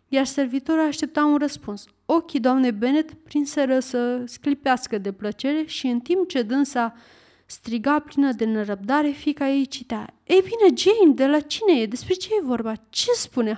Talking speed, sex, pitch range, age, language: 170 wpm, female, 235-310 Hz, 30-49, Romanian